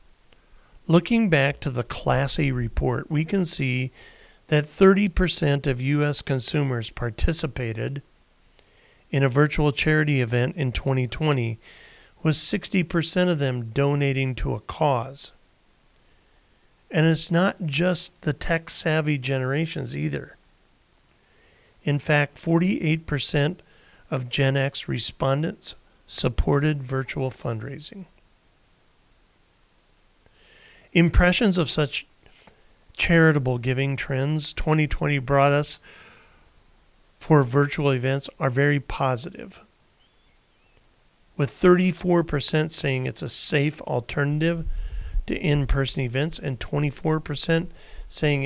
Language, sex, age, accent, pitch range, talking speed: English, male, 40-59, American, 135-160 Hz, 95 wpm